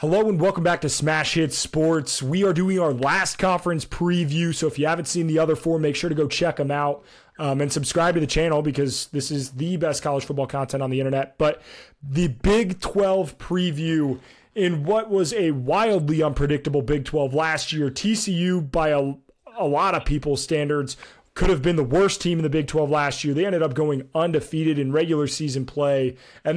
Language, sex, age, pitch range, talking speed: English, male, 30-49, 145-170 Hz, 210 wpm